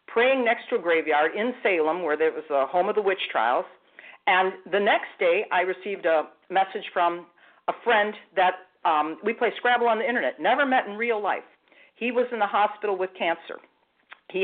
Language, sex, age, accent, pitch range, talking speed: English, female, 50-69, American, 175-240 Hz, 200 wpm